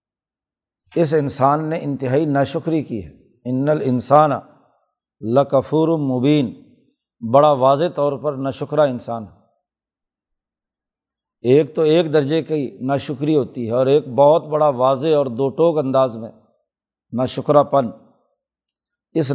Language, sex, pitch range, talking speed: Urdu, male, 130-160 Hz, 115 wpm